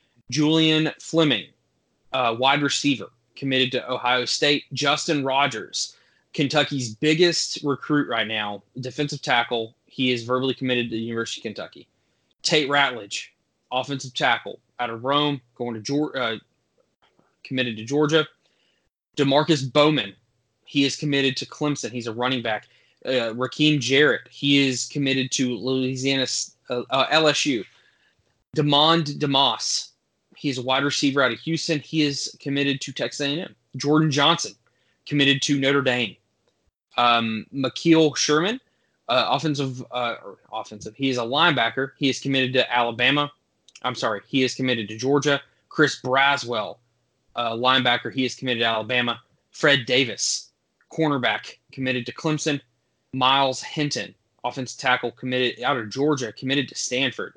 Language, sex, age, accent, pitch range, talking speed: English, male, 20-39, American, 120-145 Hz, 140 wpm